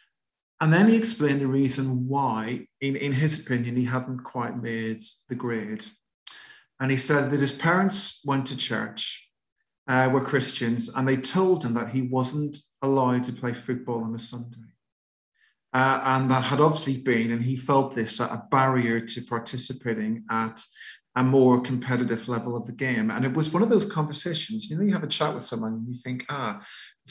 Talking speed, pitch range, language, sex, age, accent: 185 wpm, 120-145 Hz, English, male, 40-59, British